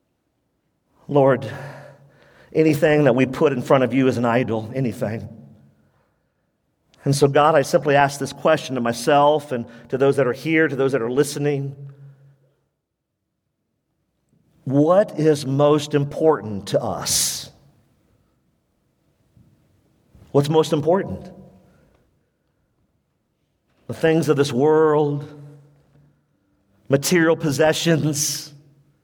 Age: 50-69